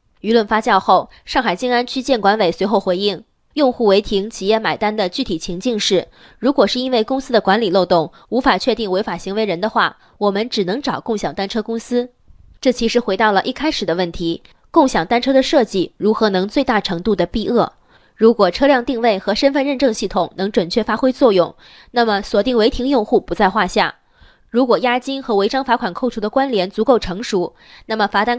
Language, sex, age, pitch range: Chinese, female, 20-39, 195-250 Hz